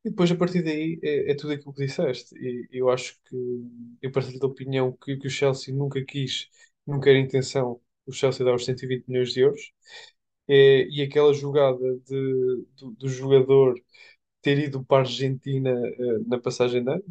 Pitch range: 125-140 Hz